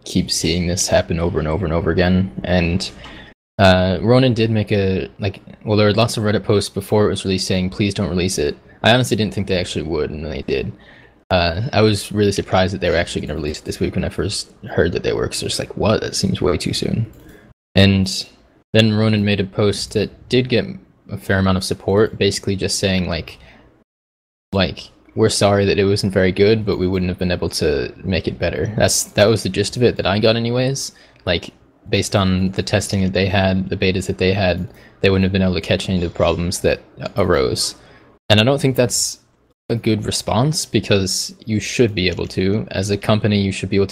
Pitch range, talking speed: 95-105 Hz, 230 wpm